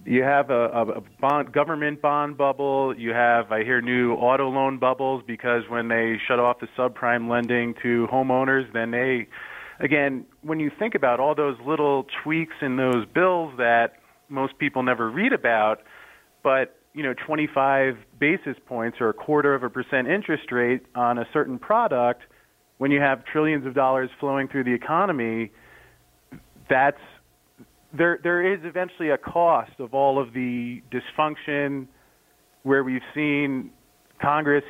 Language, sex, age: English, male, 30-49